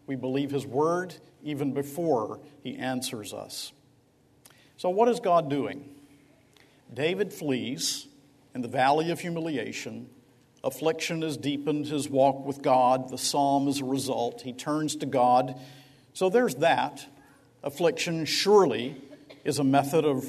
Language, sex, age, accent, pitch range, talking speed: English, male, 50-69, American, 130-155 Hz, 135 wpm